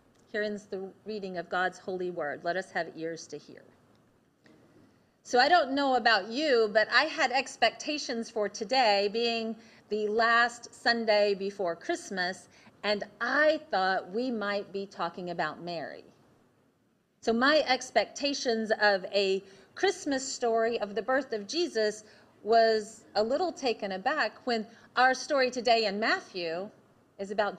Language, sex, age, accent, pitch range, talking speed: English, female, 40-59, American, 210-270 Hz, 140 wpm